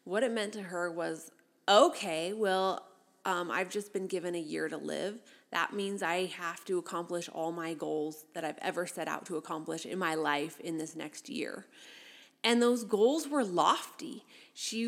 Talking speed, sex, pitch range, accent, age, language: 185 wpm, female, 170-215 Hz, American, 30-49, English